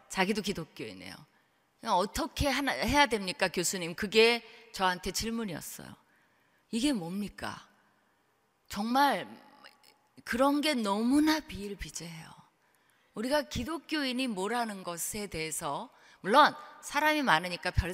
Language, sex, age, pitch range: Korean, female, 30-49, 180-255 Hz